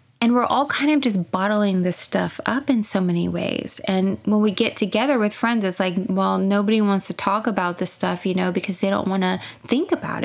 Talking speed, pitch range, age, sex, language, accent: 235 wpm, 185-225 Hz, 20-39, female, English, American